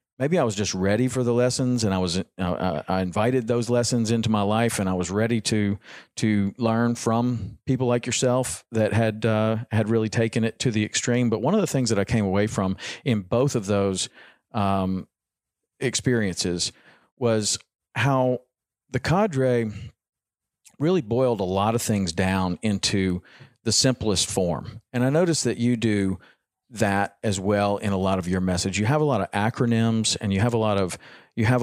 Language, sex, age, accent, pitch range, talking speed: English, male, 40-59, American, 100-125 Hz, 195 wpm